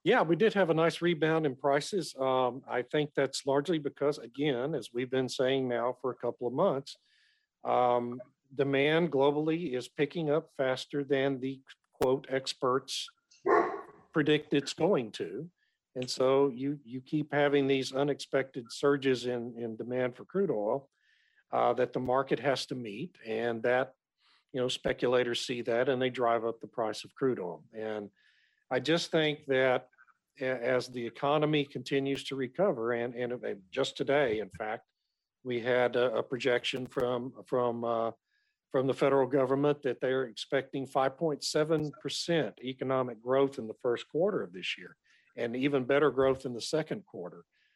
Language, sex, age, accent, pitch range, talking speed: English, male, 50-69, American, 125-145 Hz, 165 wpm